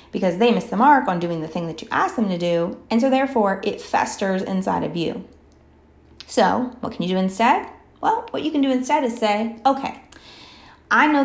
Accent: American